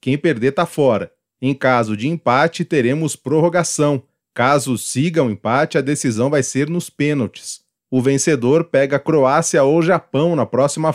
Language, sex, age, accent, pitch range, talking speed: English, male, 30-49, Brazilian, 125-160 Hz, 160 wpm